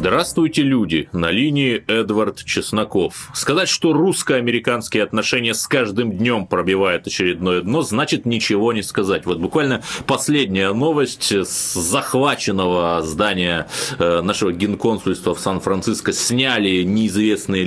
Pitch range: 90-140 Hz